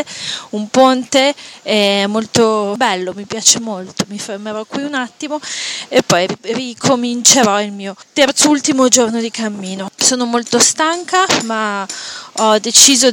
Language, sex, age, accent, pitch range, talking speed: Italian, female, 20-39, native, 210-250 Hz, 135 wpm